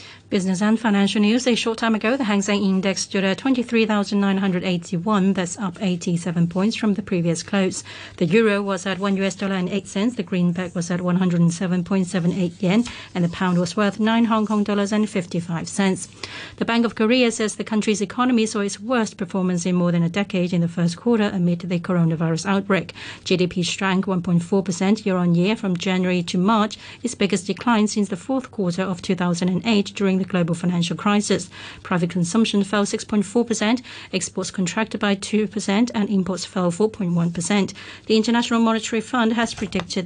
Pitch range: 180-215 Hz